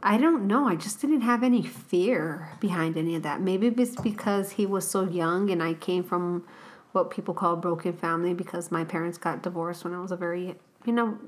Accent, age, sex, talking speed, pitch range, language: American, 30-49, female, 225 wpm, 175-210 Hz, English